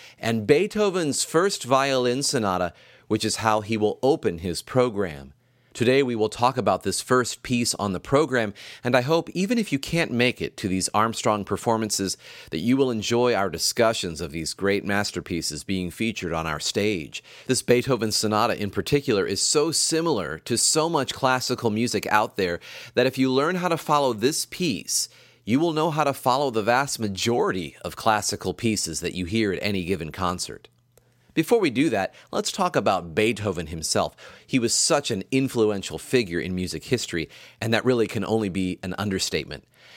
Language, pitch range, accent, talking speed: English, 95-130 Hz, American, 180 wpm